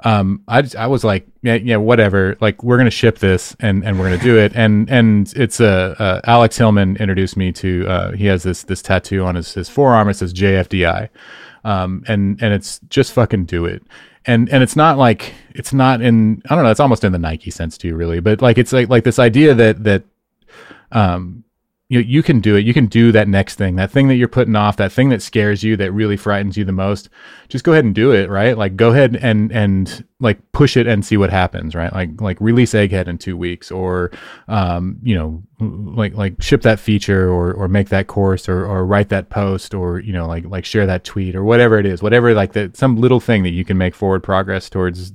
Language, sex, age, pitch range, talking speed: English, male, 30-49, 95-115 Hz, 240 wpm